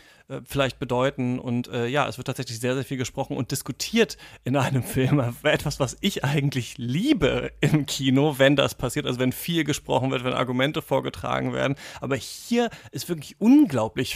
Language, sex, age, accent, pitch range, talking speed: German, male, 30-49, German, 130-165 Hz, 175 wpm